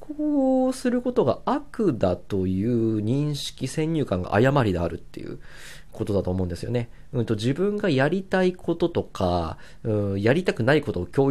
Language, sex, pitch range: Japanese, male, 100-145 Hz